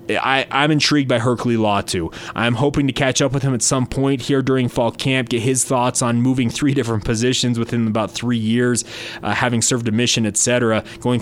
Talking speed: 210 wpm